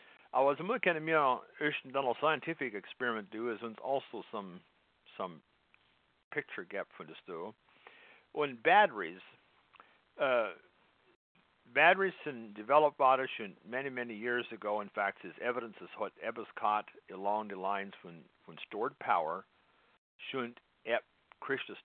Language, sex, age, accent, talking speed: English, male, 60-79, American, 125 wpm